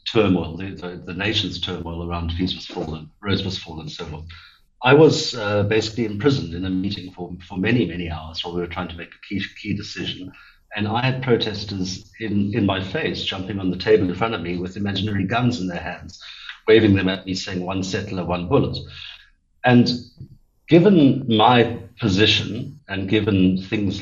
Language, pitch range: English, 90-110 Hz